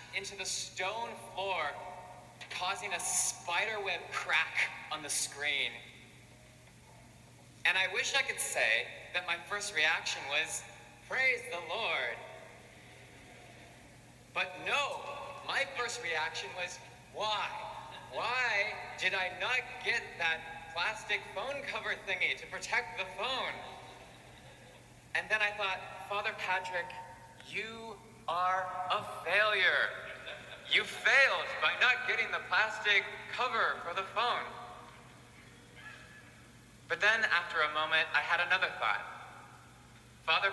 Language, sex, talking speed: English, male, 115 wpm